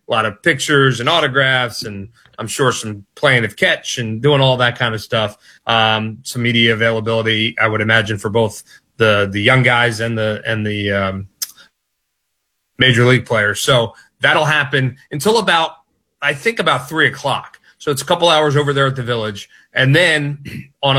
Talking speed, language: 180 wpm, English